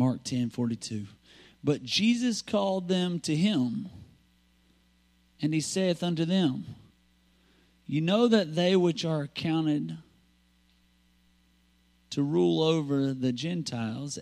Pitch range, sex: 120-190 Hz, male